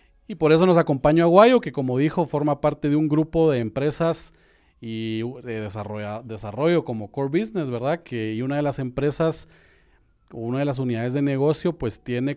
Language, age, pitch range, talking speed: Spanish, 40-59, 120-165 Hz, 180 wpm